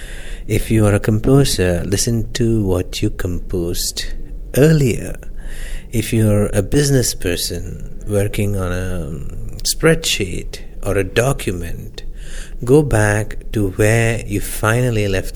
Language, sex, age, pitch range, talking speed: English, male, 60-79, 95-120 Hz, 120 wpm